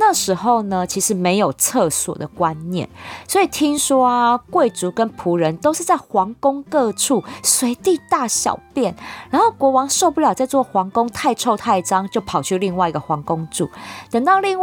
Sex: female